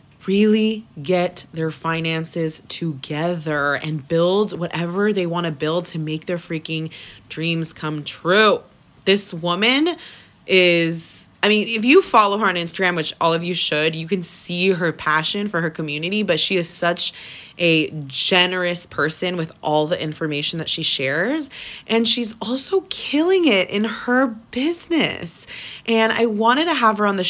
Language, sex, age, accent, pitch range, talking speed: English, female, 20-39, American, 160-210 Hz, 160 wpm